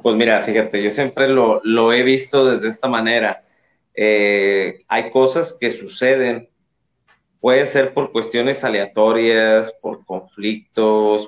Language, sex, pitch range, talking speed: Spanish, male, 110-130 Hz, 130 wpm